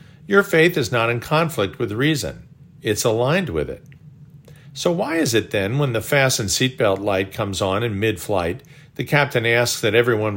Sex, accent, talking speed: male, American, 185 wpm